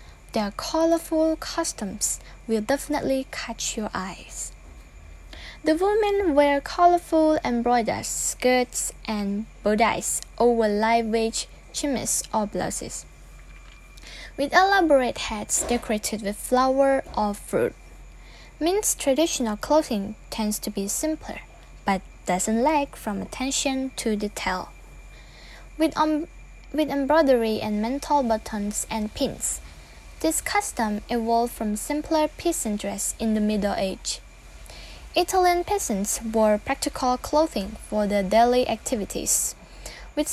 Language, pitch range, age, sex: English, 215-310 Hz, 10-29, female